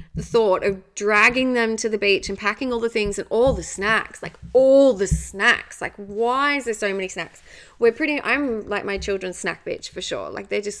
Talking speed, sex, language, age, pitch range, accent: 230 wpm, female, English, 20-39, 200-260 Hz, Australian